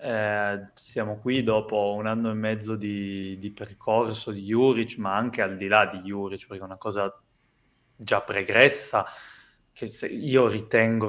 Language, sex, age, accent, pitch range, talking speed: Italian, male, 20-39, native, 100-115 Hz, 155 wpm